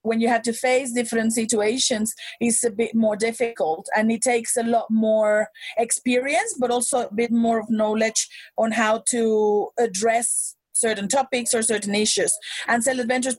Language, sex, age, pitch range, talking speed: English, female, 30-49, 220-250 Hz, 170 wpm